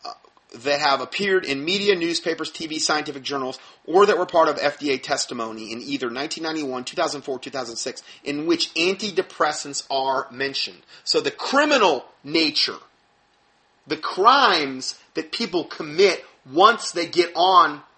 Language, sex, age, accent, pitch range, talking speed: English, male, 30-49, American, 135-185 Hz, 130 wpm